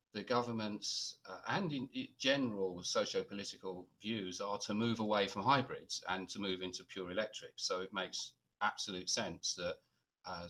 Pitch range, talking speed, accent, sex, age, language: 90-115 Hz, 155 wpm, British, male, 40-59, English